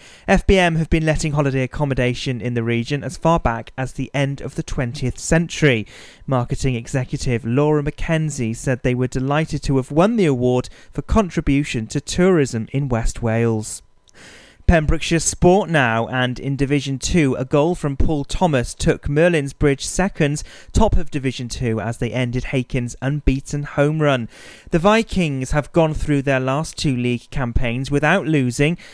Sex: male